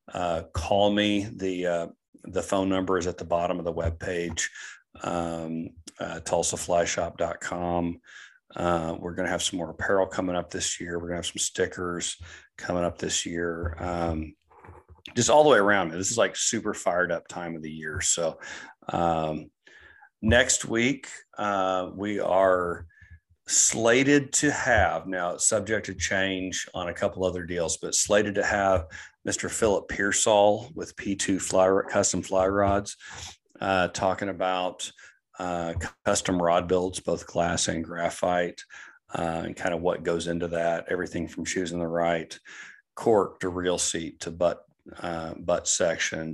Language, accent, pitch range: English, American, 85-95 Hz